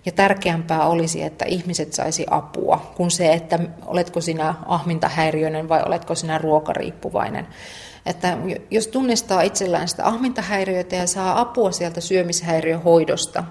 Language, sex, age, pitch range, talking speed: Finnish, female, 40-59, 165-190 Hz, 125 wpm